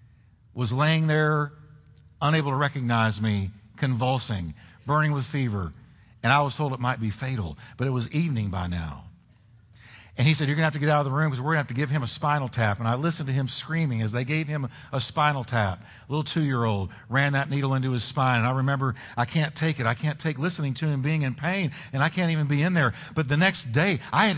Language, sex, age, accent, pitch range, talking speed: English, male, 50-69, American, 115-165 Hz, 245 wpm